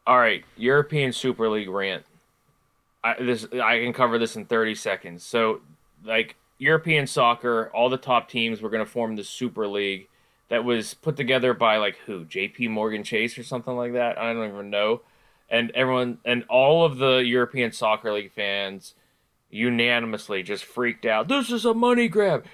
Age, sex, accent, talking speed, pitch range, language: 20-39, male, American, 175 wpm, 115-150 Hz, English